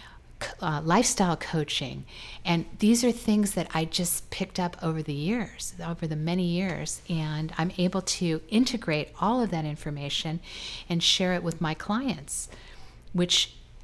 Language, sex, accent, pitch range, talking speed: English, female, American, 155-190 Hz, 150 wpm